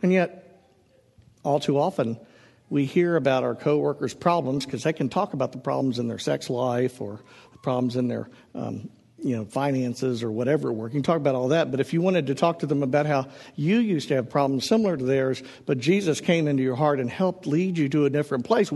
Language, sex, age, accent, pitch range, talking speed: English, male, 50-69, American, 125-170 Hz, 225 wpm